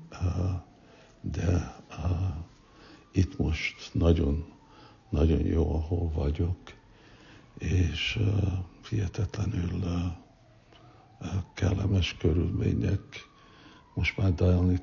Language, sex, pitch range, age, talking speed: Hungarian, male, 85-100 Hz, 60-79, 75 wpm